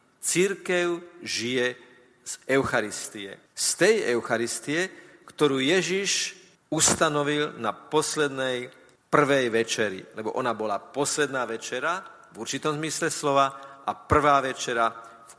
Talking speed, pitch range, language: 105 wpm, 125-155 Hz, Slovak